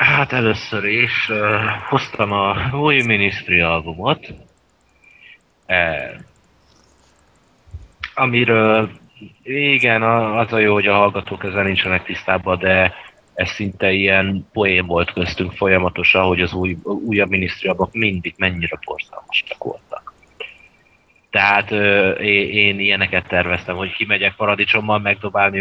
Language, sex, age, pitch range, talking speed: Hungarian, male, 30-49, 95-110 Hz, 100 wpm